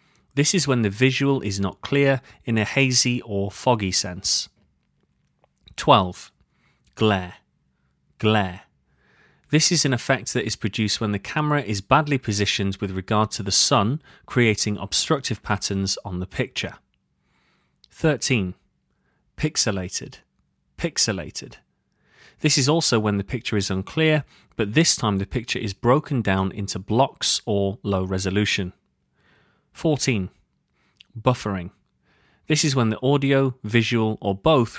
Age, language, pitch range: 30-49, English, 100-130 Hz